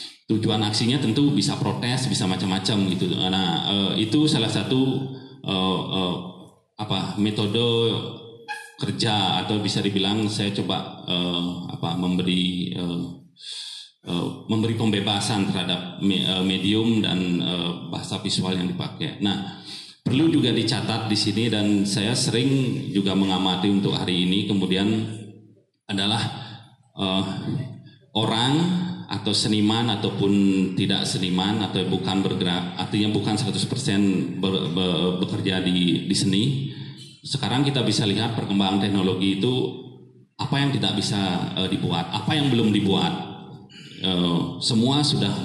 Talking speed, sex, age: 125 wpm, male, 30-49